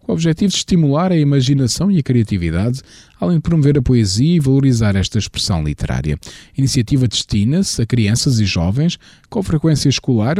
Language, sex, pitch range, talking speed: Portuguese, male, 90-135 Hz, 175 wpm